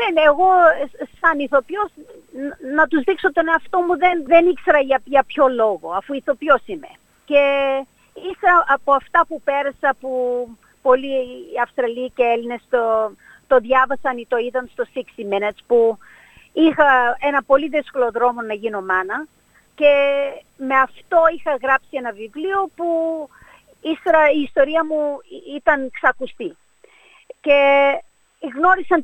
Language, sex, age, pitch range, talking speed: Greek, female, 50-69, 245-335 Hz, 130 wpm